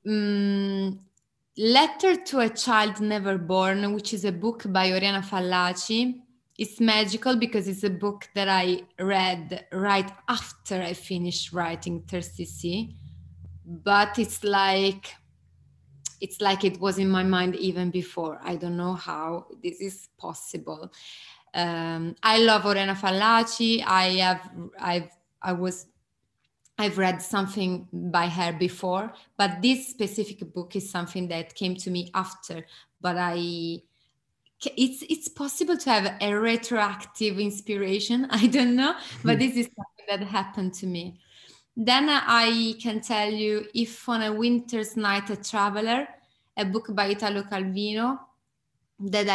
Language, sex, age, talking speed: English, female, 20-39, 140 wpm